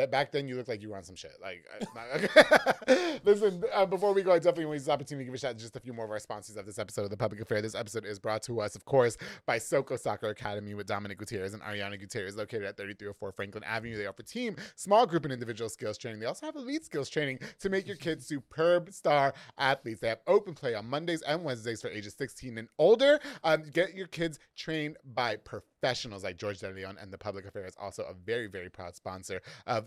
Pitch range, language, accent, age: 105-145 Hz, English, American, 30-49